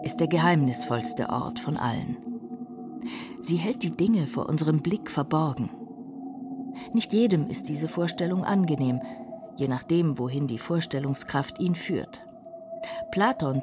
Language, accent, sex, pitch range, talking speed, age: German, German, female, 140-200 Hz, 125 wpm, 50-69